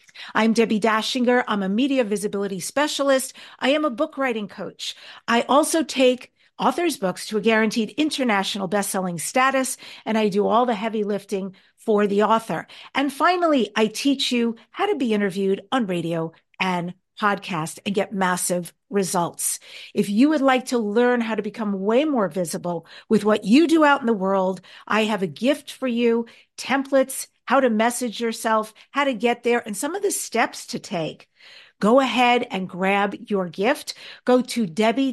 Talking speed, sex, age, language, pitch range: 175 wpm, female, 50-69, English, 200-265 Hz